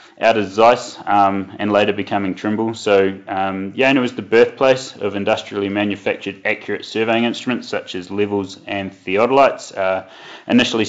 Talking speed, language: 155 wpm, English